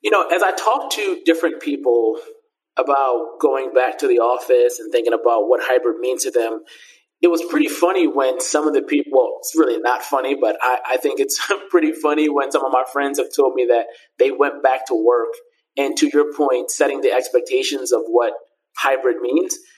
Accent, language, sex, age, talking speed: American, English, male, 30-49, 205 wpm